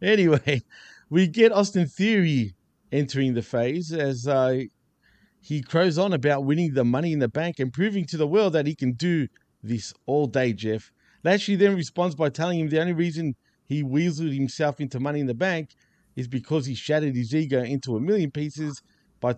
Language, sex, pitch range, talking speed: English, male, 130-170 Hz, 190 wpm